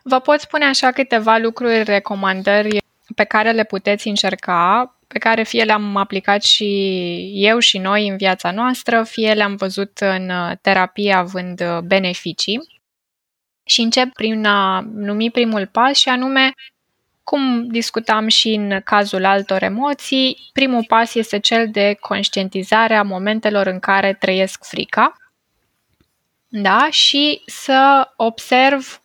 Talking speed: 130 wpm